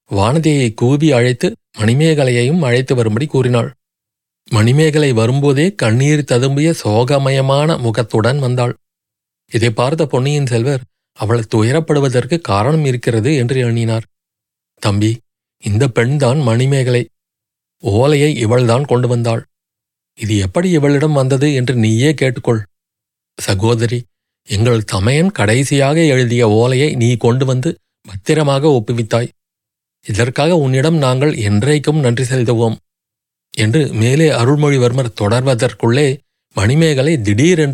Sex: male